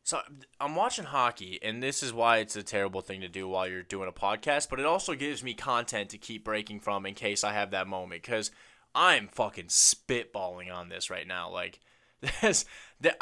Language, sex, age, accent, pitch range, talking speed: English, male, 20-39, American, 105-155 Hz, 205 wpm